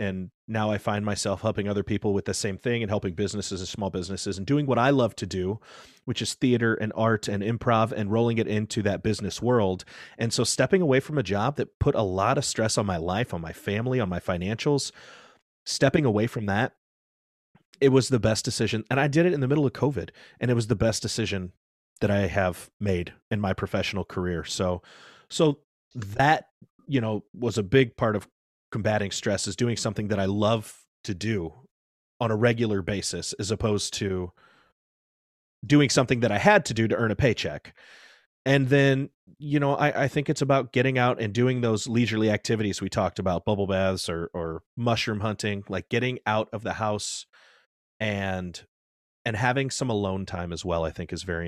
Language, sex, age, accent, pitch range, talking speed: English, male, 30-49, American, 95-120 Hz, 200 wpm